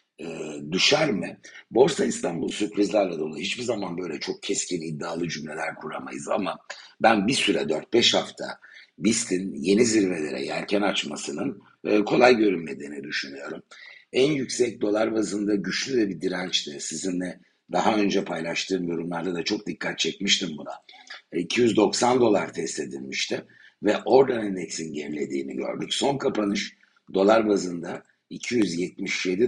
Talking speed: 120 wpm